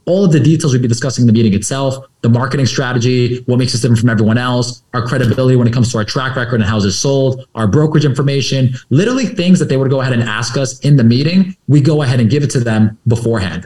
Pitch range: 115-145 Hz